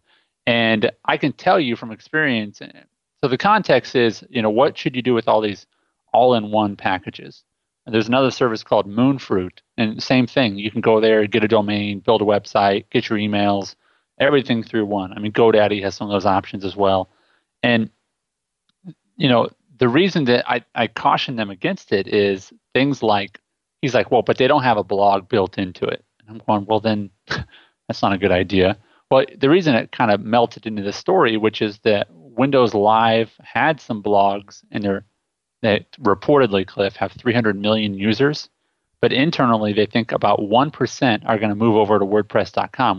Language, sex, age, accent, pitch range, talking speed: English, male, 30-49, American, 100-115 Hz, 185 wpm